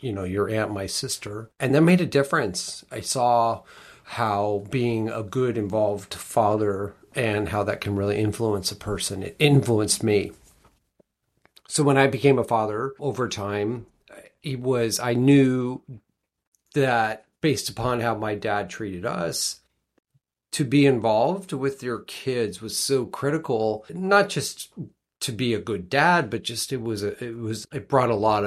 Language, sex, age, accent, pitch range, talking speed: English, male, 40-59, American, 105-130 Hz, 160 wpm